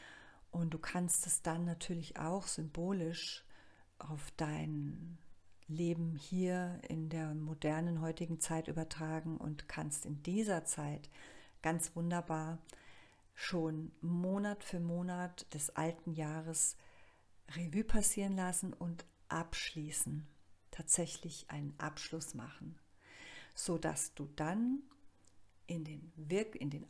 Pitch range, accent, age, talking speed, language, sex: 150-170 Hz, German, 50-69, 110 wpm, German, female